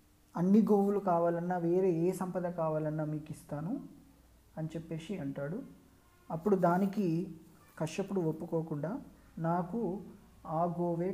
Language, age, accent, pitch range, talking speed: Telugu, 20-39, native, 145-195 Hz, 100 wpm